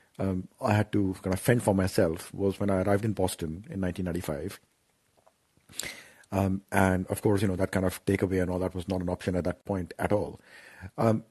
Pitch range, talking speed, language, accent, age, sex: 95-115 Hz, 210 wpm, English, Indian, 40-59, male